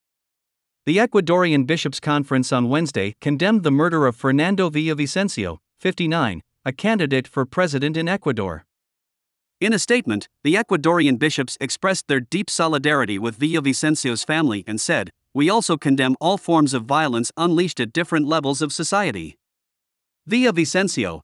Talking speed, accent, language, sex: 135 wpm, American, English, male